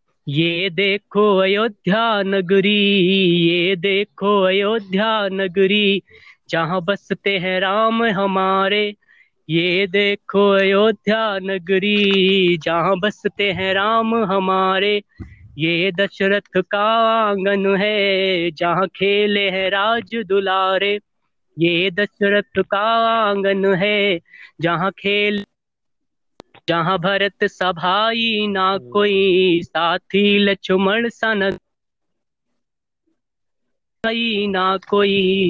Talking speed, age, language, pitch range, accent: 85 wpm, 20-39, Hindi, 190-205 Hz, native